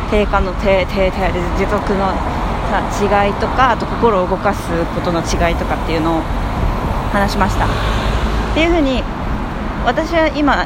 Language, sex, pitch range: Japanese, female, 175-280 Hz